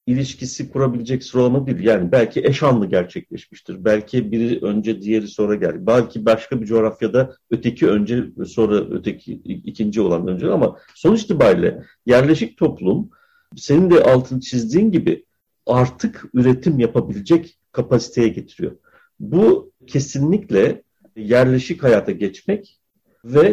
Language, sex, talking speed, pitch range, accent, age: Turkish, male, 115 wpm, 115-145 Hz, native, 50-69